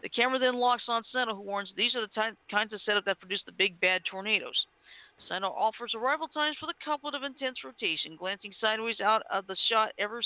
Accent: American